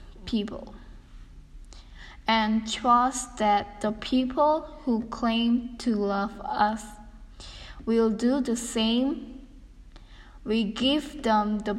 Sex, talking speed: female, 95 wpm